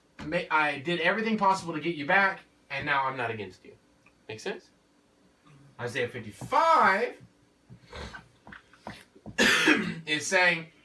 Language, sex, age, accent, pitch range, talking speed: English, male, 30-49, American, 130-205 Hz, 110 wpm